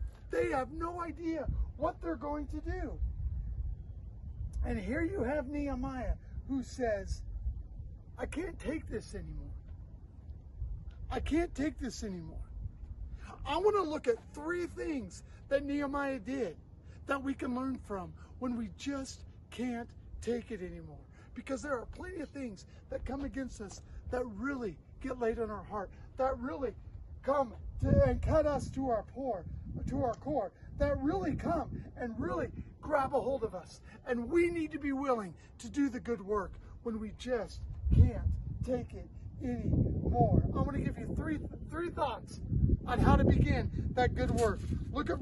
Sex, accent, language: male, American, English